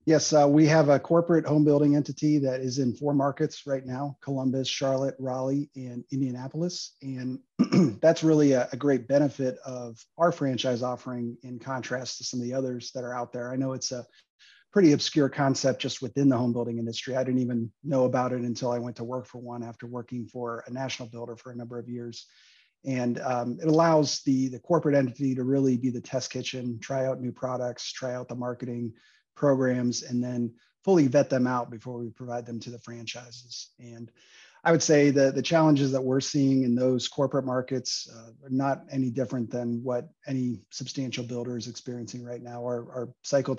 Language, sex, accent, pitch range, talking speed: English, male, American, 120-135 Hz, 200 wpm